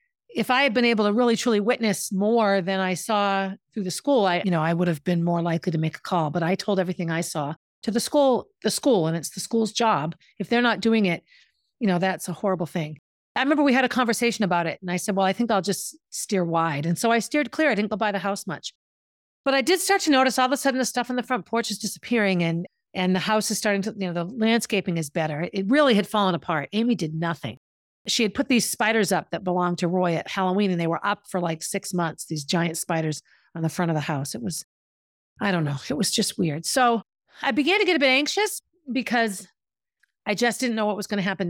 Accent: American